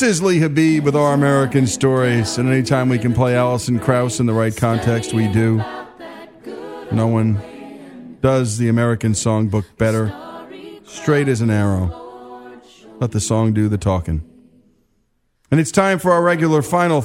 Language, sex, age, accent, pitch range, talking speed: English, male, 40-59, American, 110-150 Hz, 160 wpm